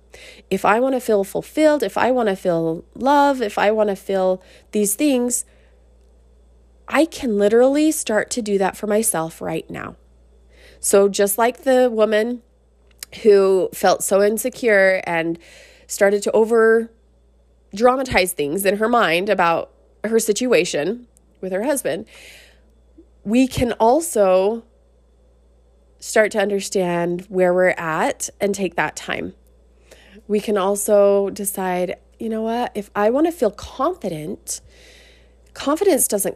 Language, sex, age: English, female, 20-39